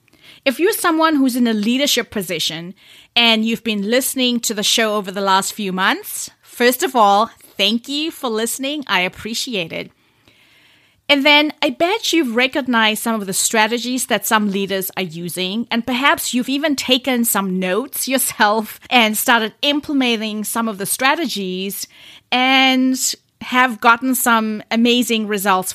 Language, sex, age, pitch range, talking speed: English, female, 30-49, 195-260 Hz, 155 wpm